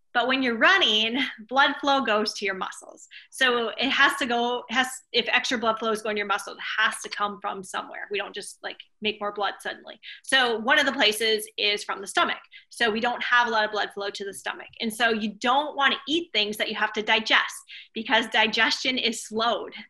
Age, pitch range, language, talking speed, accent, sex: 20-39, 210-255 Hz, English, 230 wpm, American, female